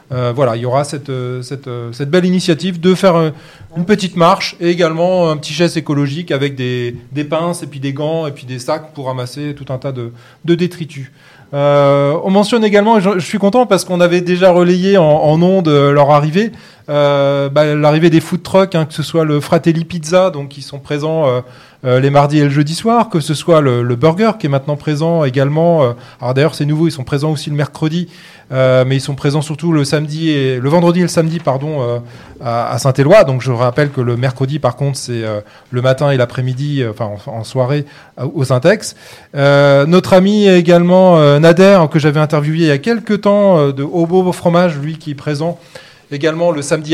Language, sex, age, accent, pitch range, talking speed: French, male, 30-49, French, 135-170 Hz, 220 wpm